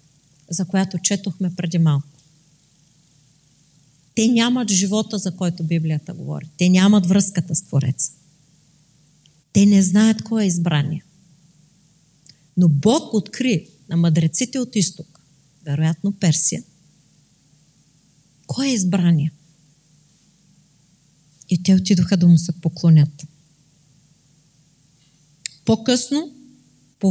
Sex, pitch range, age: female, 155-205 Hz, 40-59